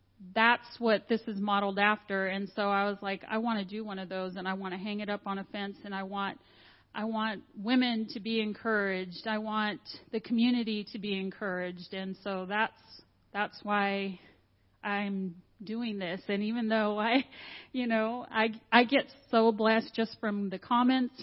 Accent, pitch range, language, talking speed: American, 195-230 Hz, English, 190 wpm